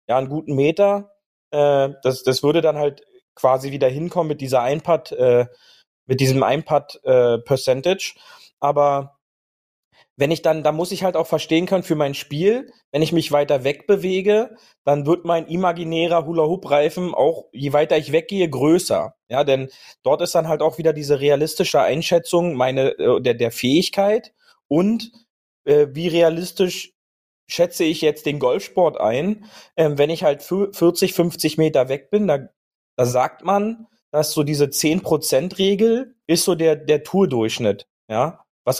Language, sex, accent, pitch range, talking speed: German, male, German, 140-185 Hz, 160 wpm